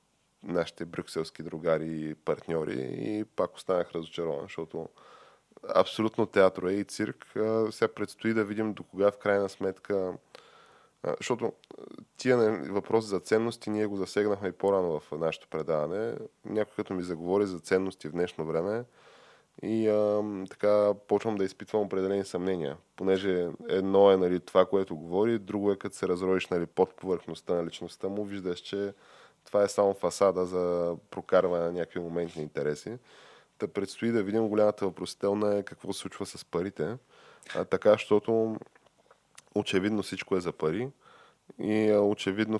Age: 10-29